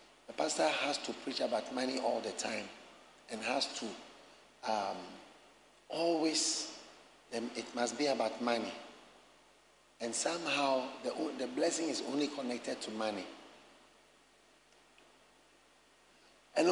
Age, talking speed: 50-69, 110 wpm